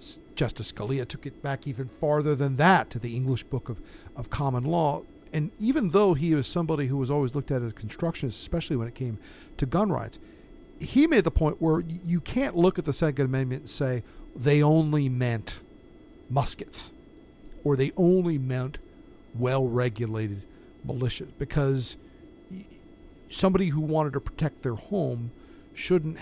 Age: 50-69